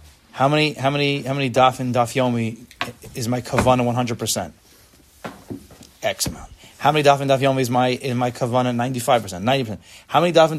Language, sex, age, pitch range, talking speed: English, male, 20-39, 110-145 Hz, 185 wpm